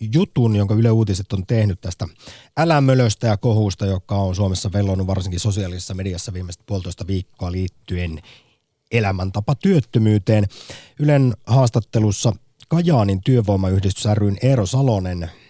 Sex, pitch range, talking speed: male, 95-125 Hz, 115 wpm